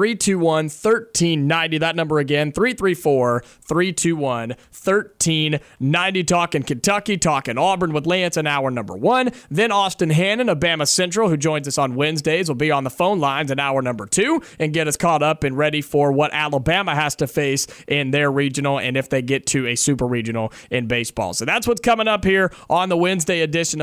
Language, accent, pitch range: English, American, 145-190 Hz